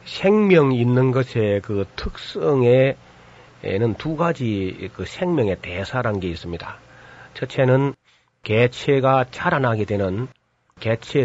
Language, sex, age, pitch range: Korean, male, 40-59, 100-135 Hz